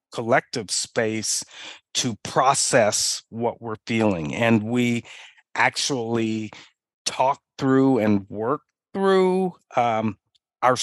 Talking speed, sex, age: 95 wpm, male, 50-69